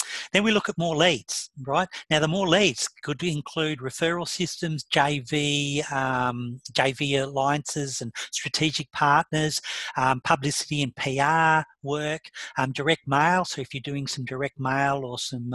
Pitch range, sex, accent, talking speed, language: 135-160 Hz, male, Australian, 150 wpm, English